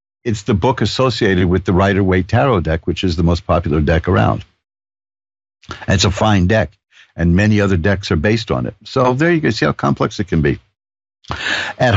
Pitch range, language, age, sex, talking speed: 85-115 Hz, English, 60-79, male, 200 wpm